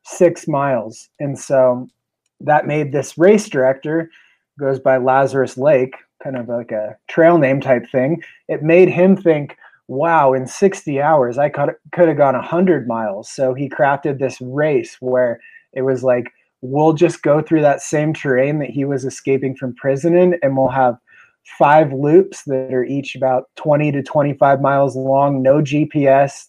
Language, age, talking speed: English, 20-39, 170 wpm